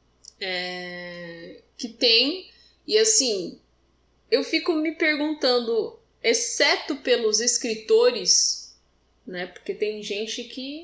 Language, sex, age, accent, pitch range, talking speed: Portuguese, female, 10-29, Brazilian, 200-310 Hz, 95 wpm